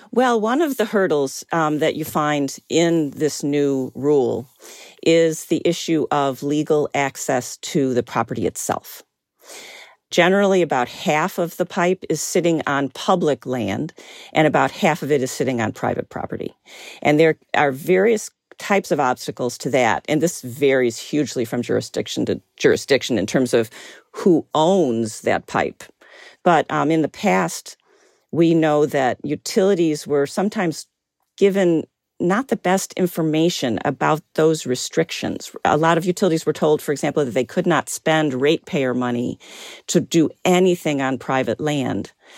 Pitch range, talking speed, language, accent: 140-175 Hz, 155 wpm, English, American